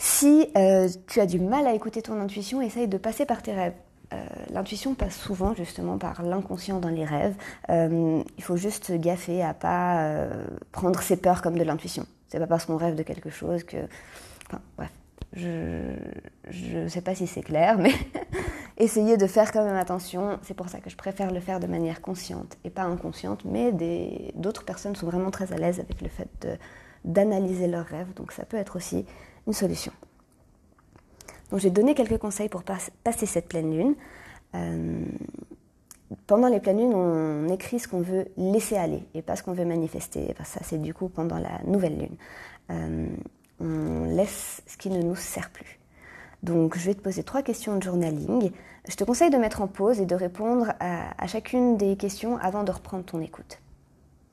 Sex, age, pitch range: female, 30-49, 170-210 Hz